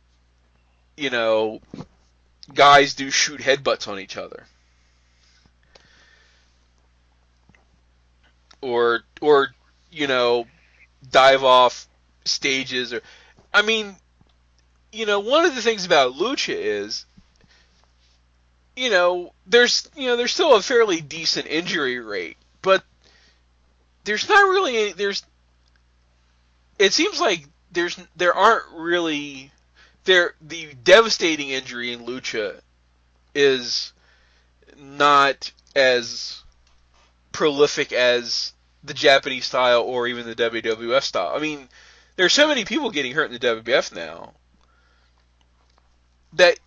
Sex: male